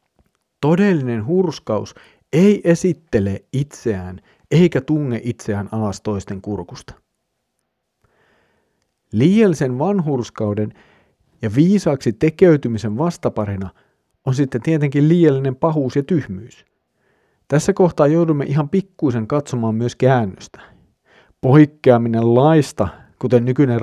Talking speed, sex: 90 wpm, male